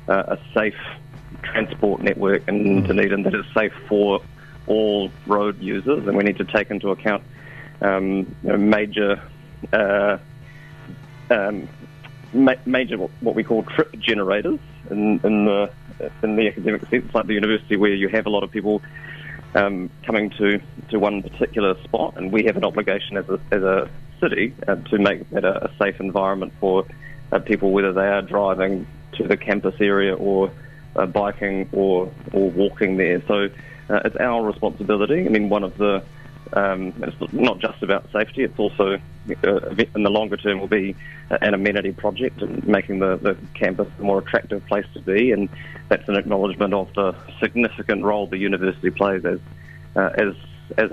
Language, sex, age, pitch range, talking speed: English, male, 30-49, 95-110 Hz, 175 wpm